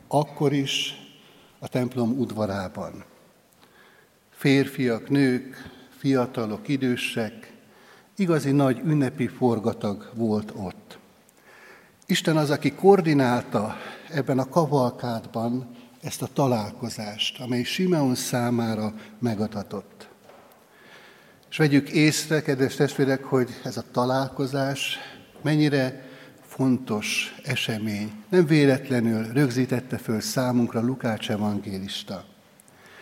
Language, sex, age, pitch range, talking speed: Hungarian, male, 60-79, 115-140 Hz, 85 wpm